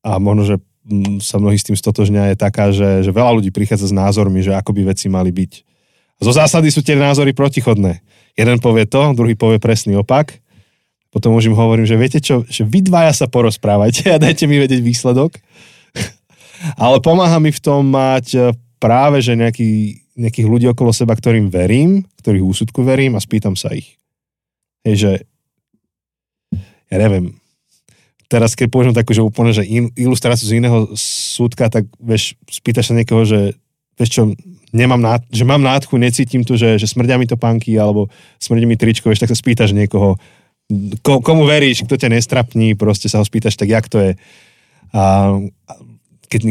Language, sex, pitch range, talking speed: Slovak, male, 105-125 Hz, 175 wpm